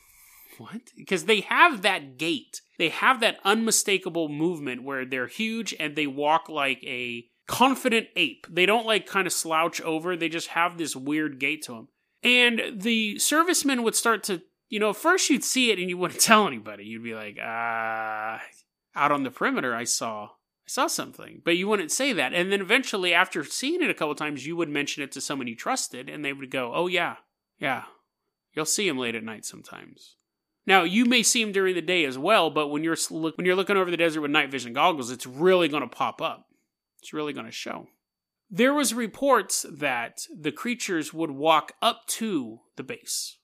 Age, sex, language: 30-49, male, English